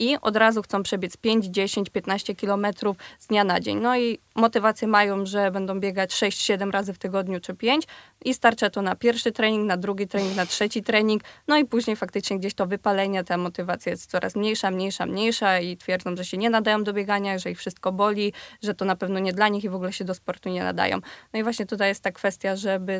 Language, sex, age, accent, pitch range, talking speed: Polish, female, 20-39, native, 190-220 Hz, 230 wpm